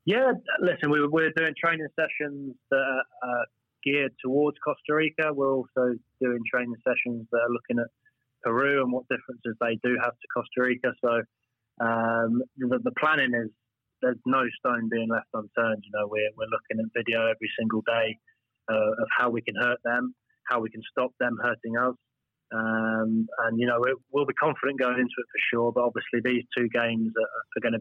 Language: English